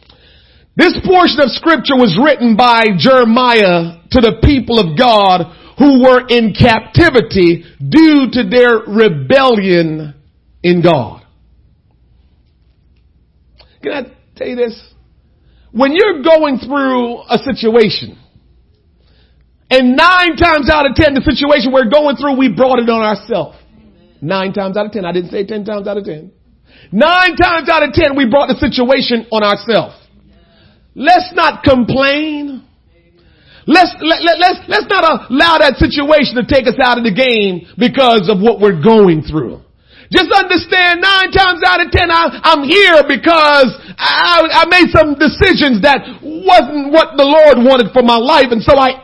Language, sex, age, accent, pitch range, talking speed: English, male, 50-69, American, 210-315 Hz, 155 wpm